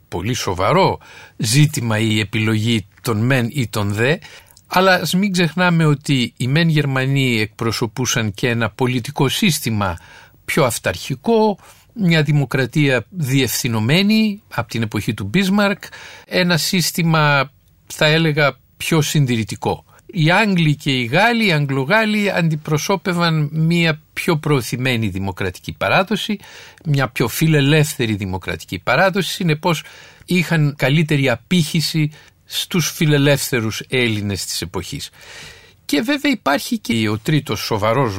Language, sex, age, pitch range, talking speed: Greek, male, 50-69, 115-175 Hz, 115 wpm